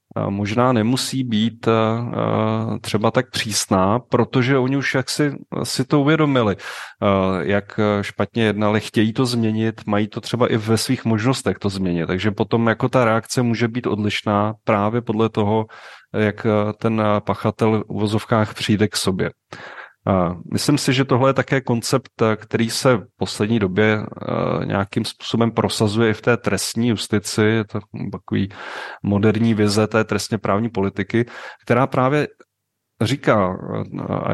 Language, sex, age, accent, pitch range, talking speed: Czech, male, 30-49, native, 105-125 Hz, 145 wpm